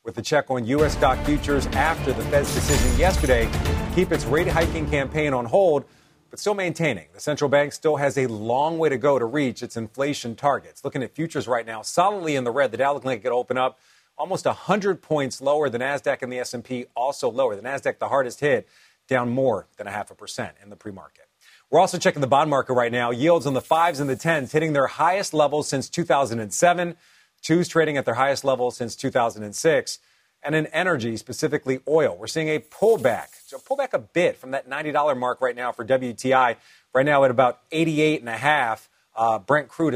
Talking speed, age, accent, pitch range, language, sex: 205 wpm, 40-59, American, 120-155 Hz, English, male